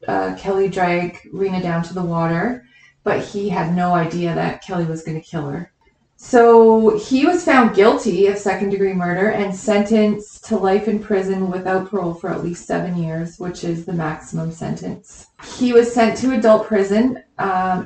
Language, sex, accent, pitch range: English, female, American, 180-215 Hz